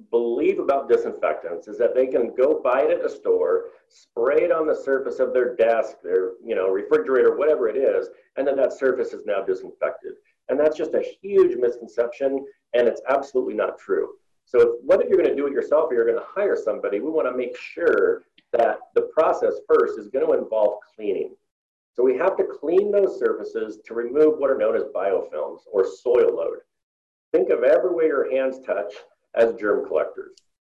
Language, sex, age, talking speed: English, male, 40-59, 200 wpm